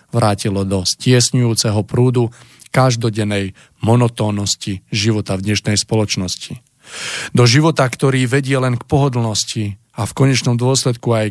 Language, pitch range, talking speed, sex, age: Slovak, 110-130 Hz, 115 wpm, male, 40-59